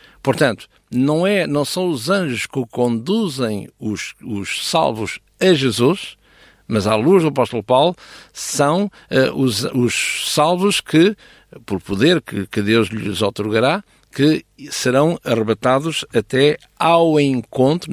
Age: 60-79